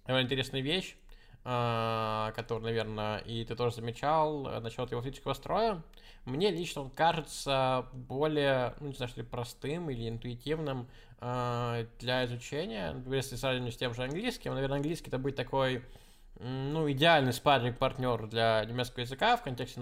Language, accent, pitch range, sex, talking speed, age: Russian, native, 115-140 Hz, male, 140 wpm, 20-39